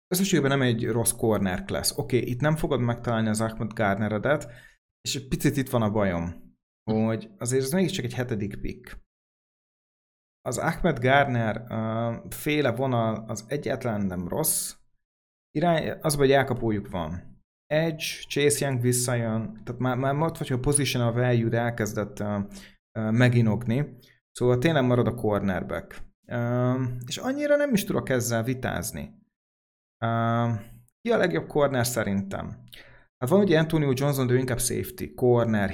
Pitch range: 110-135 Hz